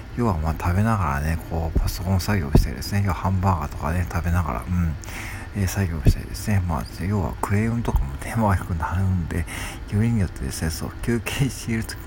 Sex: male